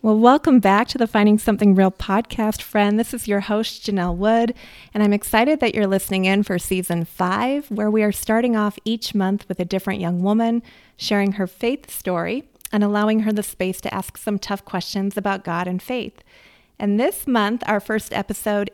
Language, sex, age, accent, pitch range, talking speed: English, female, 30-49, American, 190-215 Hz, 200 wpm